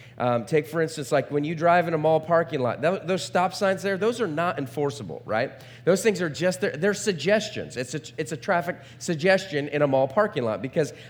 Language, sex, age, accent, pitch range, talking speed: English, male, 30-49, American, 120-175 Hz, 225 wpm